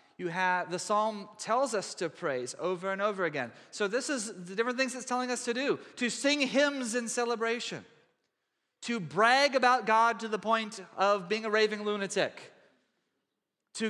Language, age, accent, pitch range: English, 30-49, American, 175-230 Hz